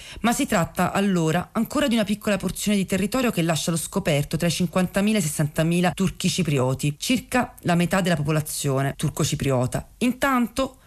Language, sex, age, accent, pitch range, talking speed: Italian, female, 40-59, native, 150-195 Hz, 160 wpm